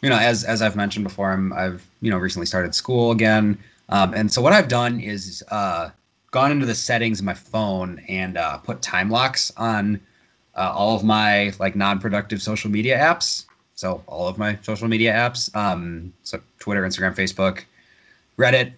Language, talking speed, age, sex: English, 185 wpm, 20-39, male